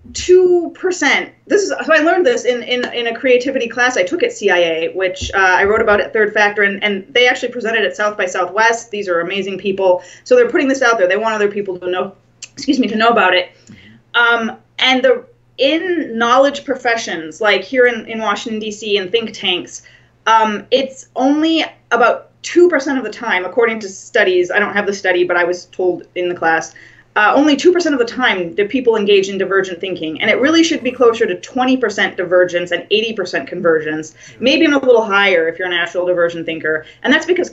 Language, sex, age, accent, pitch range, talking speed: English, female, 30-49, American, 190-260 Hz, 215 wpm